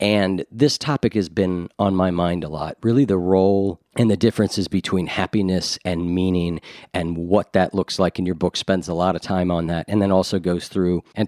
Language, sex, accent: English, male, American